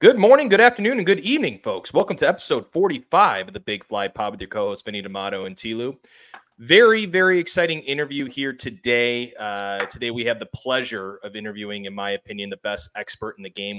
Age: 30-49